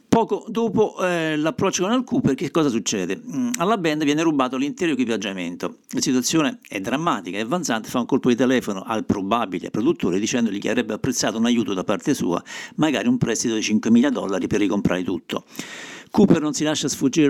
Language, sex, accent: Italian, male, native